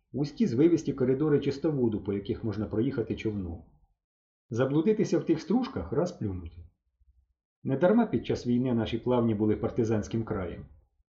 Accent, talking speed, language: native, 130 wpm, Ukrainian